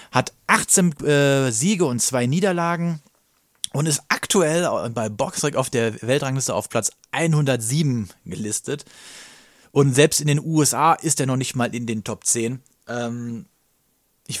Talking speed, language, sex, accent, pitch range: 145 wpm, German, male, German, 115-150 Hz